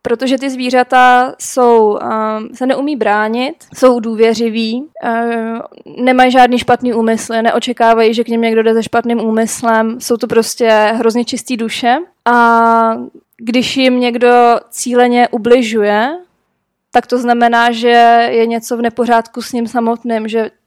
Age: 20-39